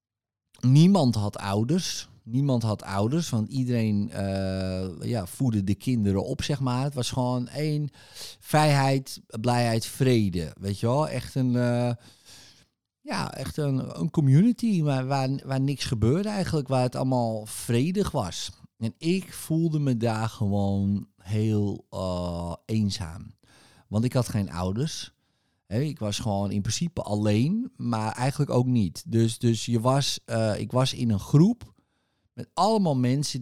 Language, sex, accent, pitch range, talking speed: Dutch, male, Dutch, 105-140 Hz, 145 wpm